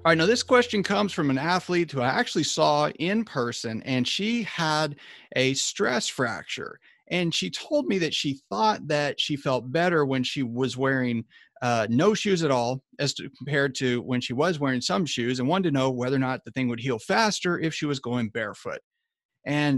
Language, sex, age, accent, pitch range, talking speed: English, male, 40-59, American, 125-165 Hz, 205 wpm